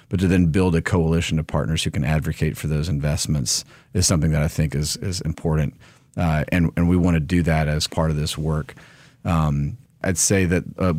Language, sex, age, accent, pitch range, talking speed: English, male, 40-59, American, 80-95 Hz, 220 wpm